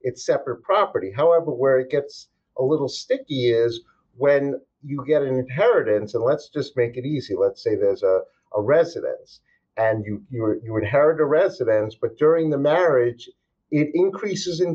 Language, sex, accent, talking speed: English, male, American, 165 wpm